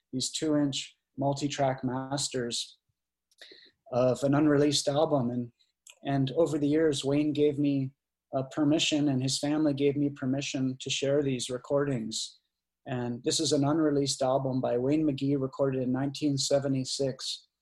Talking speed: 135 wpm